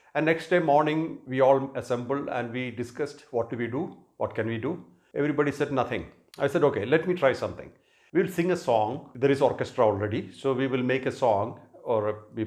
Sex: male